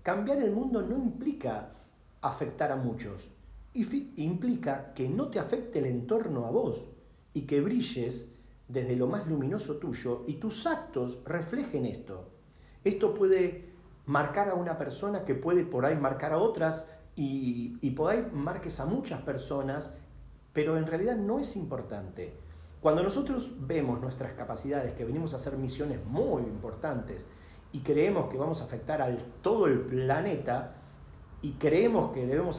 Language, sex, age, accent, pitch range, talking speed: Spanish, male, 40-59, Argentinian, 125-180 Hz, 155 wpm